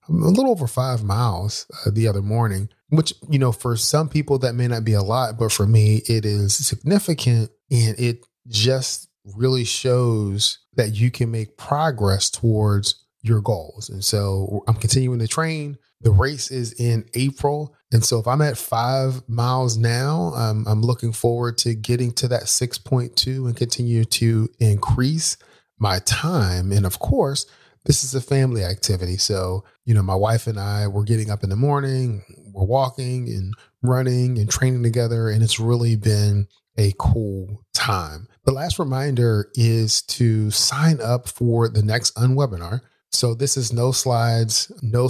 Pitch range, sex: 105-130 Hz, male